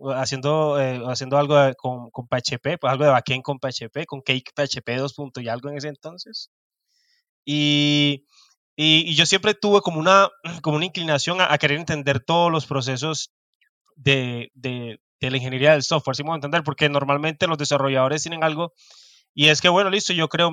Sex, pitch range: male, 135-175 Hz